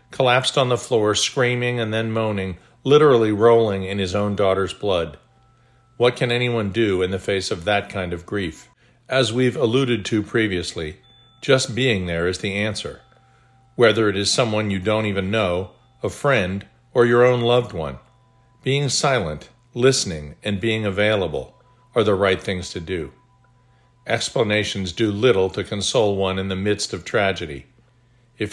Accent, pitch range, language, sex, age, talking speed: American, 95-125 Hz, English, male, 50-69, 160 wpm